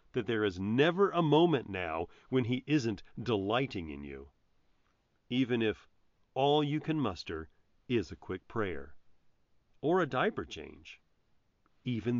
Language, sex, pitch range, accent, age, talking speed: English, male, 105-155 Hz, American, 40-59, 140 wpm